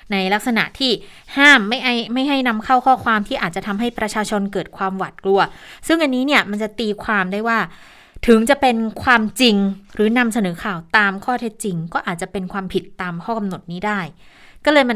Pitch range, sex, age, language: 180-225 Hz, female, 20-39, Thai